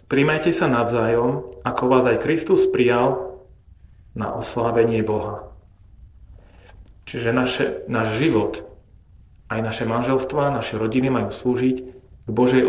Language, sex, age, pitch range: Slovak, male, 40-59, 105-135 Hz